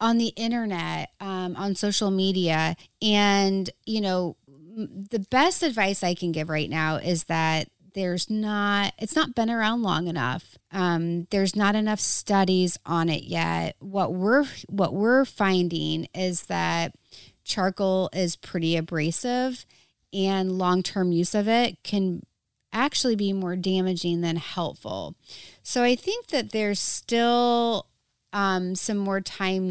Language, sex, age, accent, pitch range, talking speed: English, female, 30-49, American, 175-215 Hz, 140 wpm